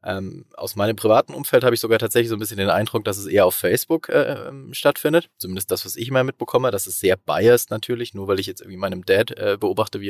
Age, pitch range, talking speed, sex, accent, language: 20-39, 100-120 Hz, 250 wpm, male, German, German